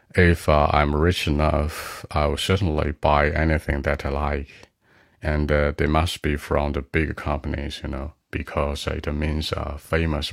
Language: Chinese